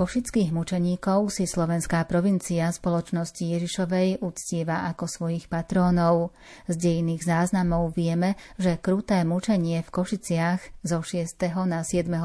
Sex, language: female, Slovak